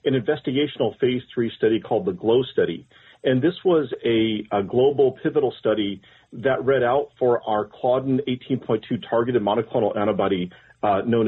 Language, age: English, 40-59